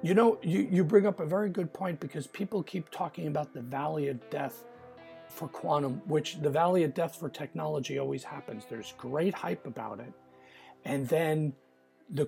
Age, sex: 50-69, male